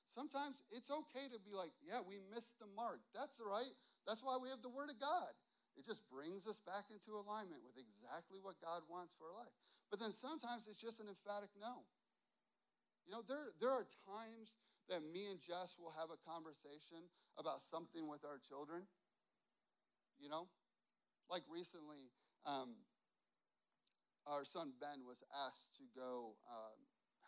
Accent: American